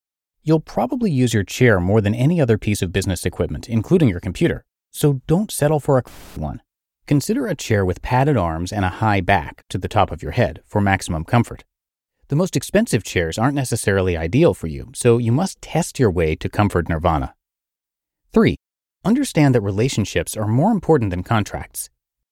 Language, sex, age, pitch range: English, male, 30-49, 90-145 Hz